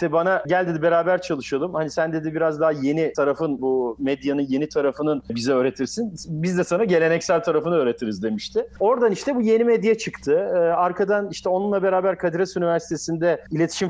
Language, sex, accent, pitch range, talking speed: Turkish, male, native, 155-215 Hz, 165 wpm